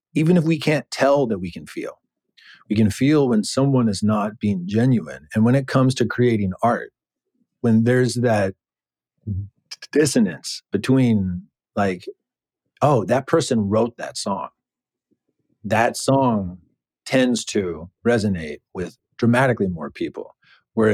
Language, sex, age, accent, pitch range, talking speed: English, male, 40-59, American, 100-130 Hz, 140 wpm